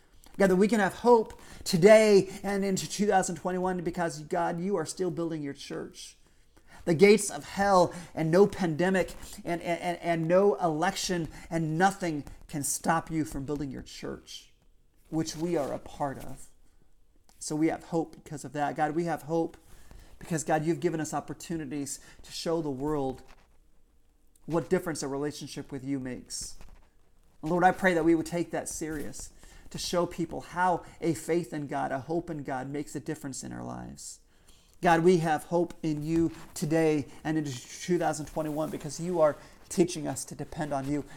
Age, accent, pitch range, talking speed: 40-59, American, 130-170 Hz, 175 wpm